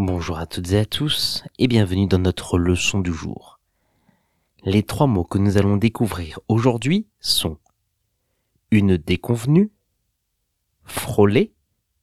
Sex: male